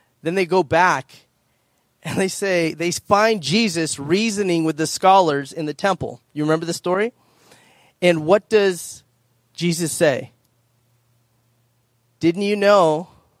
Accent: American